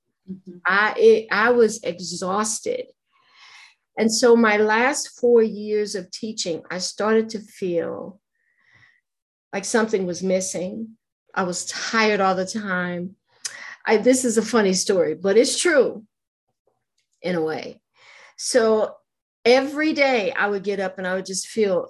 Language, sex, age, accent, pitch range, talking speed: English, female, 50-69, American, 180-225 Hz, 135 wpm